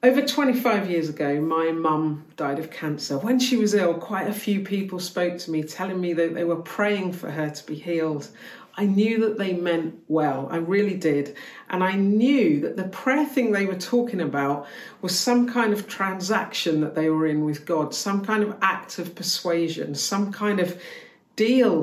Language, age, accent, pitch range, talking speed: English, 50-69, British, 160-215 Hz, 200 wpm